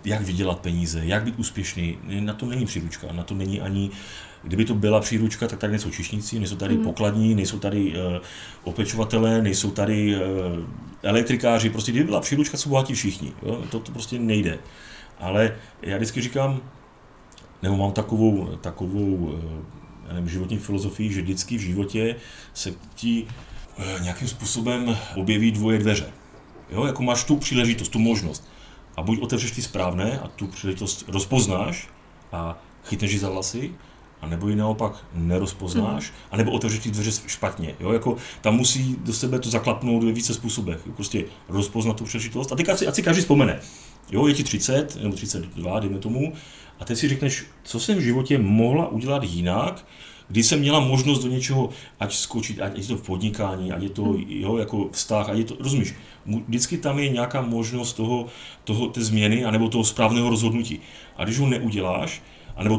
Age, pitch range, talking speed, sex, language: 30-49, 95-120 Hz, 170 wpm, male, Slovak